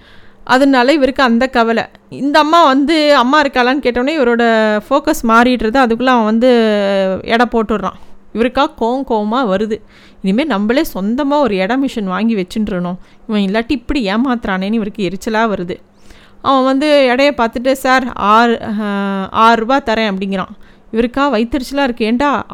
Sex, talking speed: female, 130 wpm